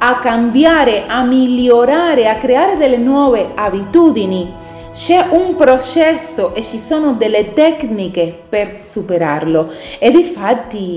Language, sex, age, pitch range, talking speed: Italian, female, 30-49, 175-275 Hz, 115 wpm